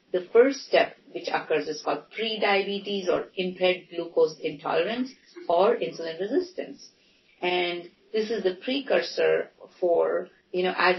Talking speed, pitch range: 130 wpm, 170-215 Hz